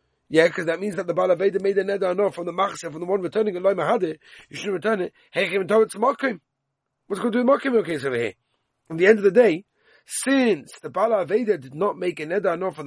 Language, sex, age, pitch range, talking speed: English, male, 40-59, 120-200 Hz, 305 wpm